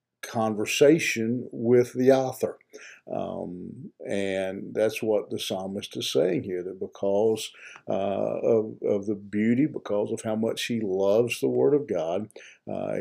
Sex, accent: male, American